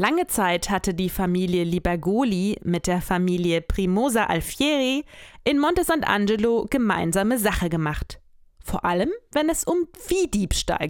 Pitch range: 175-240 Hz